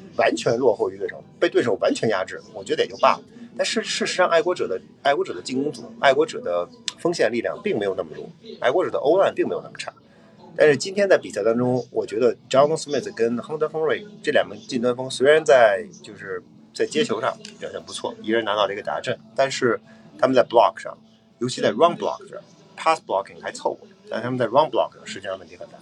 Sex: male